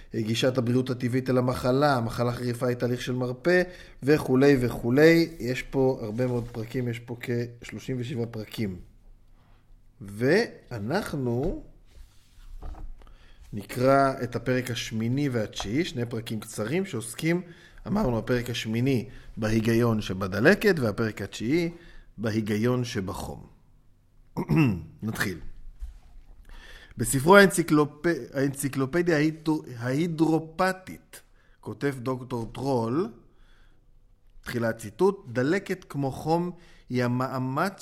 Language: Hebrew